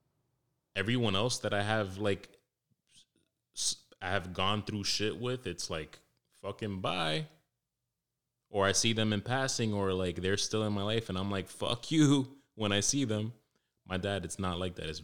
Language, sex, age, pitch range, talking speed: English, male, 20-39, 85-105 Hz, 180 wpm